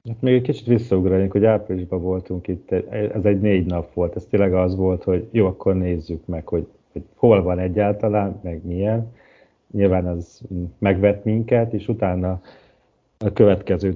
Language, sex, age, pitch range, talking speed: Hungarian, male, 40-59, 90-105 Hz, 165 wpm